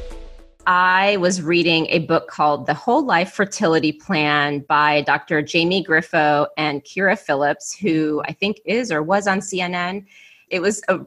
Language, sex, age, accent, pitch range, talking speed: English, female, 30-49, American, 150-185 Hz, 155 wpm